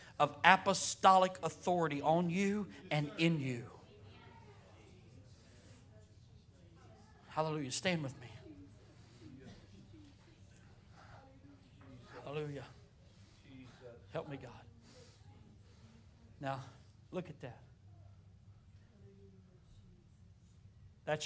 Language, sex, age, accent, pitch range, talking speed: English, male, 40-59, American, 105-160 Hz, 60 wpm